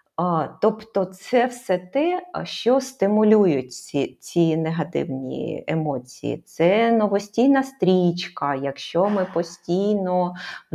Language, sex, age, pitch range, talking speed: Ukrainian, female, 30-49, 170-210 Hz, 95 wpm